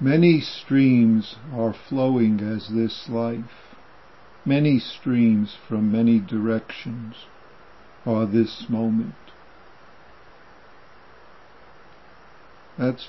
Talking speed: 75 wpm